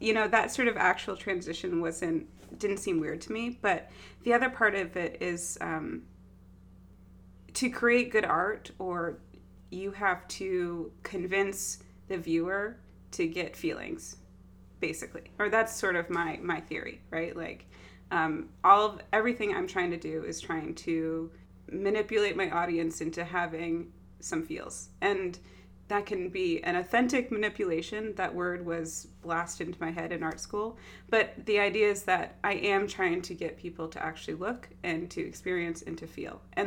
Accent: American